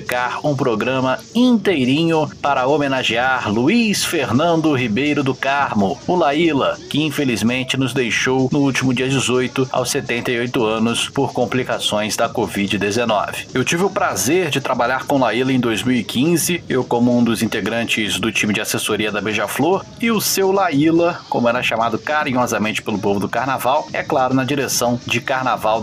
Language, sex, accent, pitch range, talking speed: Portuguese, male, Brazilian, 115-155 Hz, 155 wpm